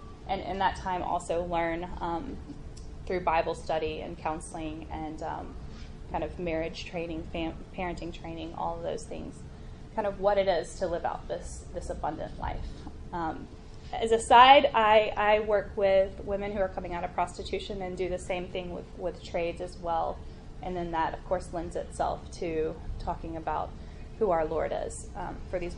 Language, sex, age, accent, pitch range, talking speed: English, female, 10-29, American, 170-230 Hz, 185 wpm